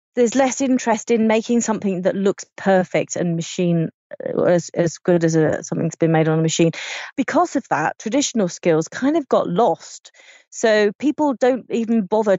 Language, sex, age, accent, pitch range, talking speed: English, female, 30-49, British, 165-210 Hz, 175 wpm